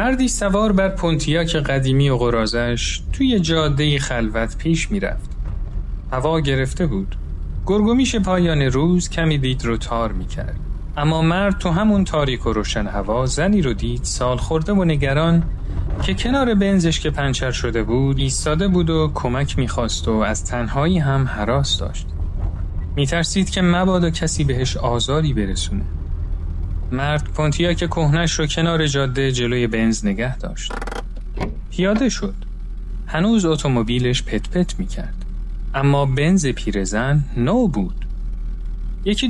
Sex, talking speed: male, 140 wpm